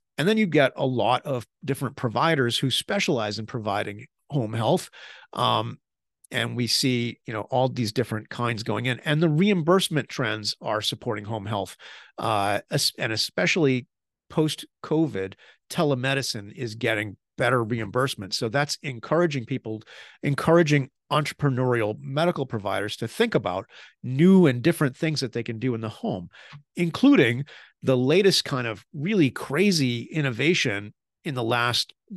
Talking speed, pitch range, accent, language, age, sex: 145 wpm, 120-155 Hz, American, English, 40-59, male